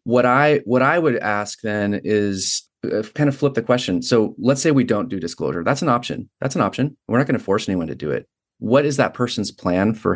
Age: 30-49